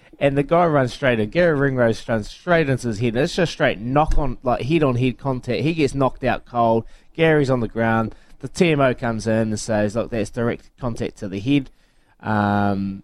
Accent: Australian